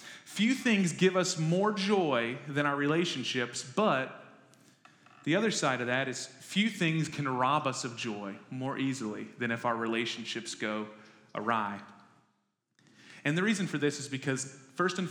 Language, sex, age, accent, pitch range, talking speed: English, male, 30-49, American, 135-180 Hz, 160 wpm